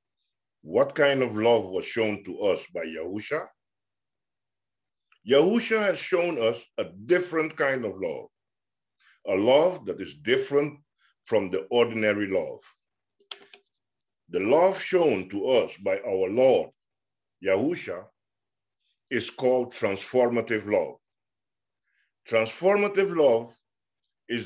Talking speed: 110 wpm